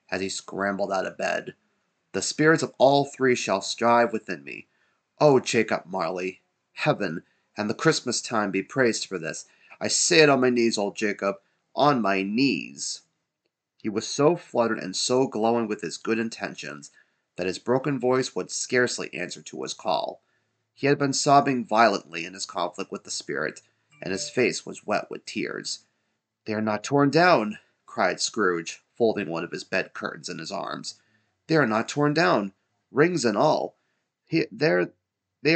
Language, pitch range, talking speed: English, 100-130 Hz, 175 wpm